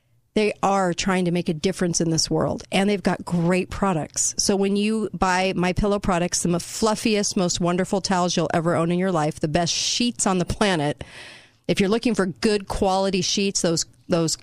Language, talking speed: English, 200 wpm